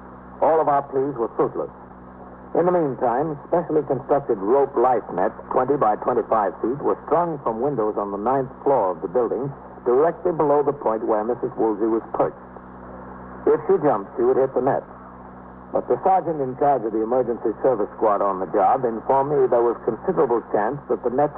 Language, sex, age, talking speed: English, male, 60-79, 190 wpm